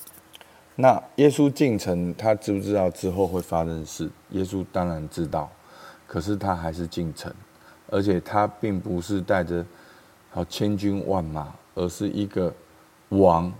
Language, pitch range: Chinese, 85-105 Hz